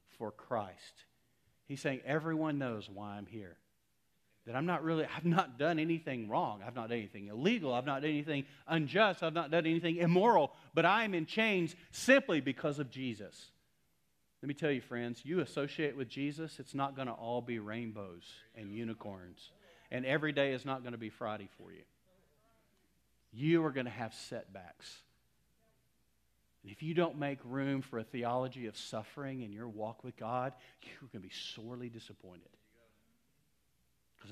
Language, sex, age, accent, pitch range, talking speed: English, male, 40-59, American, 110-145 Hz, 175 wpm